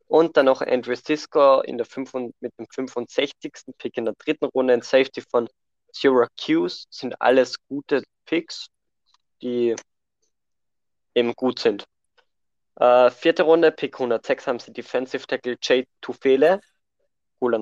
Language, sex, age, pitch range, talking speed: Danish, male, 20-39, 120-155 Hz, 135 wpm